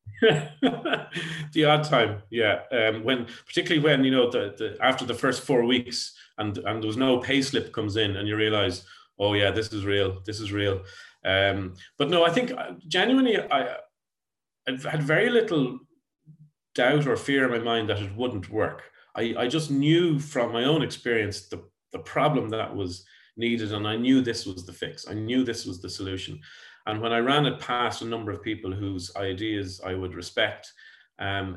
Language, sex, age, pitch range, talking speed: English, male, 30-49, 95-130 Hz, 185 wpm